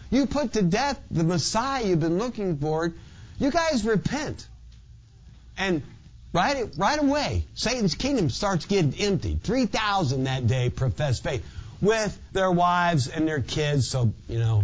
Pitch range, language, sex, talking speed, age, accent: 115-175 Hz, English, male, 150 wpm, 50-69, American